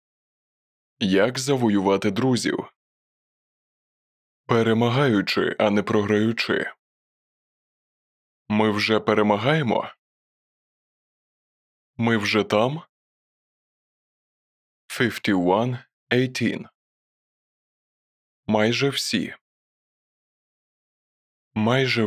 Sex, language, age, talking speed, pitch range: male, English, 20-39, 50 wpm, 105-125 Hz